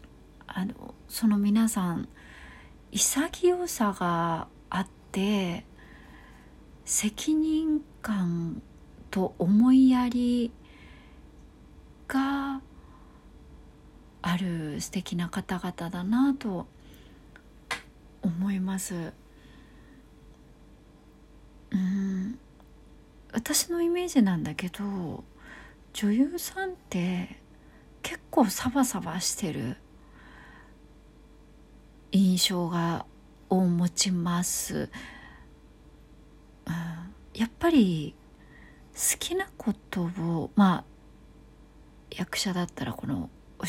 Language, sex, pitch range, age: Japanese, female, 170-260 Hz, 40-59